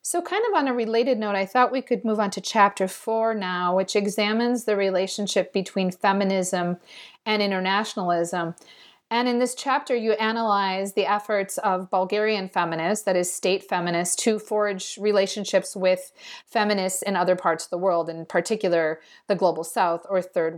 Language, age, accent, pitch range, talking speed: English, 40-59, American, 180-215 Hz, 170 wpm